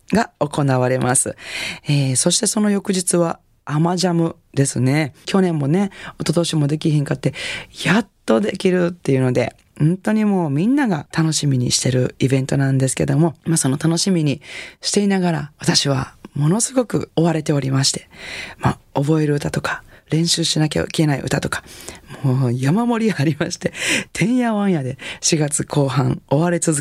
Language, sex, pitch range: Japanese, female, 135-175 Hz